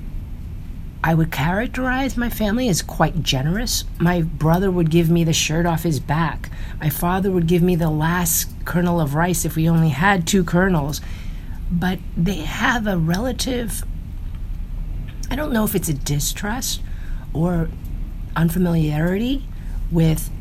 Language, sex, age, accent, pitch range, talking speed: English, female, 40-59, American, 125-170 Hz, 145 wpm